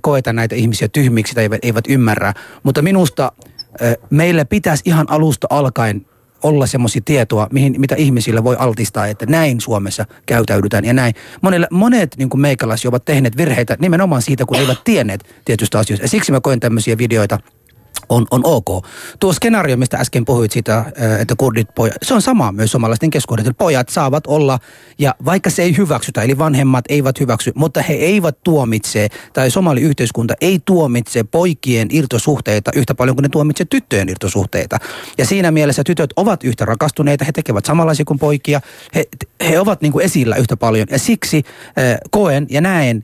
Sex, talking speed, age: male, 170 wpm, 30-49